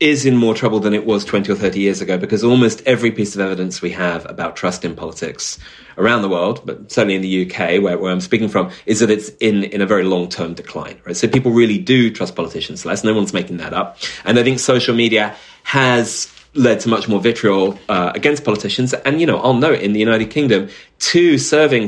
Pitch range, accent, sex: 100-135 Hz, British, male